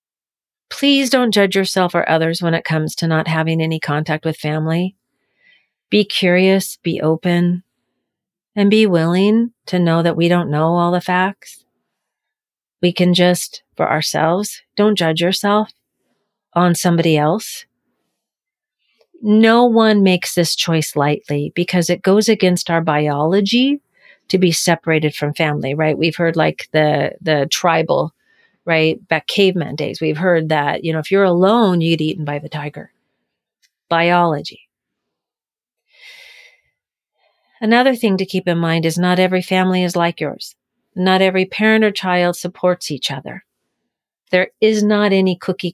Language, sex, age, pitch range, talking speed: English, female, 40-59, 160-205 Hz, 145 wpm